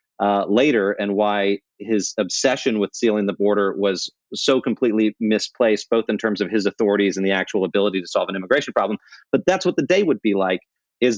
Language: English